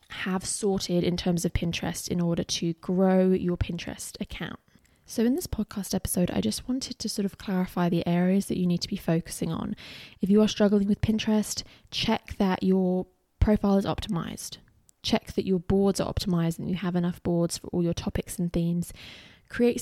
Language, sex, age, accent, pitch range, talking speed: English, female, 20-39, British, 180-210 Hz, 195 wpm